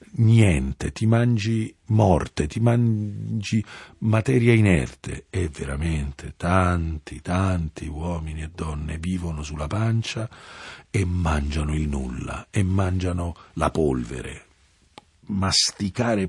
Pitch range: 80-120 Hz